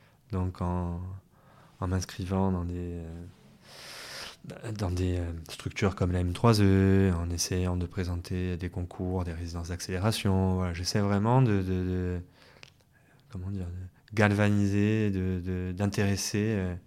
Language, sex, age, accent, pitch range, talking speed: French, male, 20-39, French, 95-120 Hz, 120 wpm